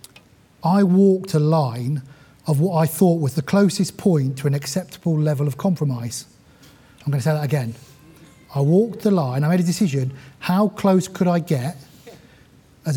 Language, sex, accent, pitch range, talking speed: English, male, British, 135-175 Hz, 170 wpm